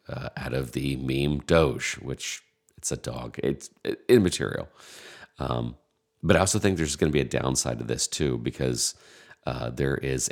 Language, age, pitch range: English, 40-59, 65-80 Hz